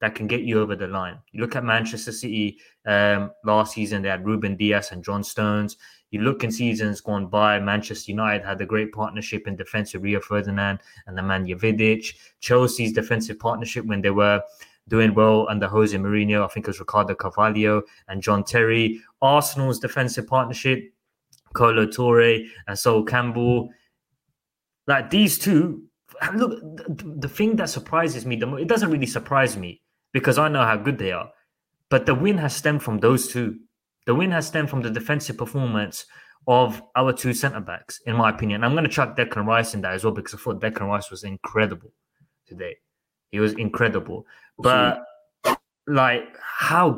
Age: 20-39